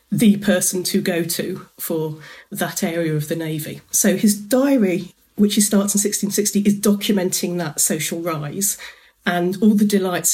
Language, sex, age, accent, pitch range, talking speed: English, female, 40-59, British, 175-205 Hz, 165 wpm